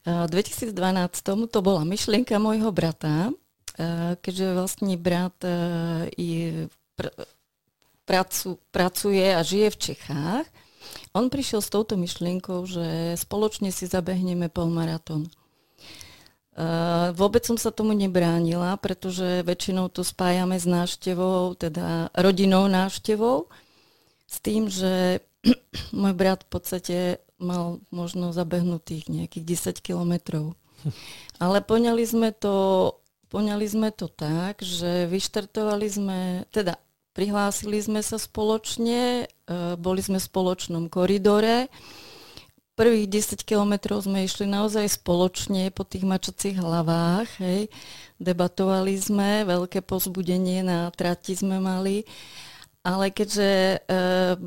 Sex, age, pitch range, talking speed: female, 30-49, 175-205 Hz, 105 wpm